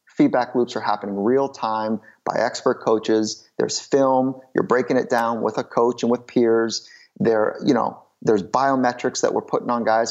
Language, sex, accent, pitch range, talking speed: English, male, American, 110-130 Hz, 185 wpm